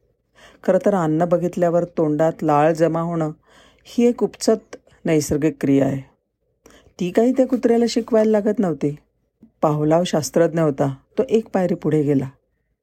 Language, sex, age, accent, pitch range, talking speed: Marathi, female, 40-59, native, 150-205 Hz, 130 wpm